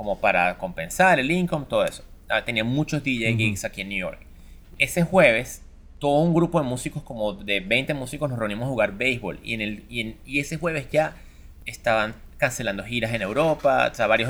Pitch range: 110-150 Hz